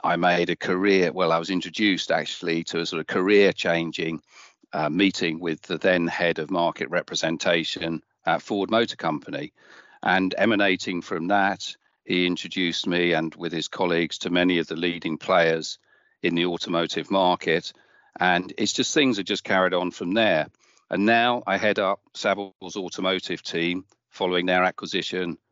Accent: British